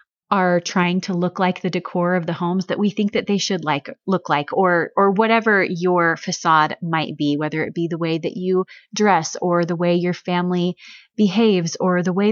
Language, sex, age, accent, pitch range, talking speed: English, female, 30-49, American, 175-210 Hz, 210 wpm